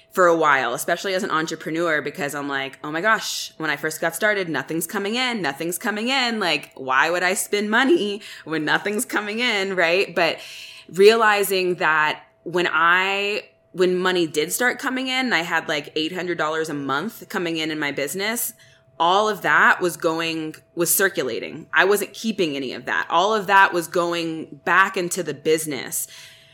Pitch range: 150-195 Hz